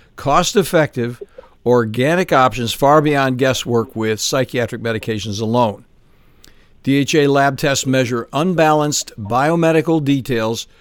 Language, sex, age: English, male, 60-79